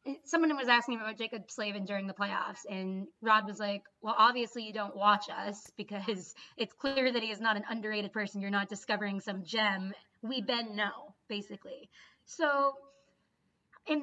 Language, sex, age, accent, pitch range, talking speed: English, female, 20-39, American, 210-265 Hz, 170 wpm